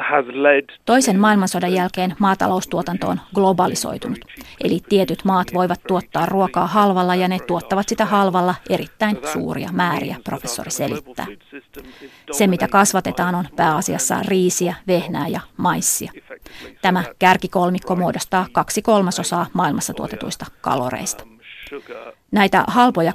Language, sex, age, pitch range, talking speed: Finnish, female, 30-49, 175-200 Hz, 110 wpm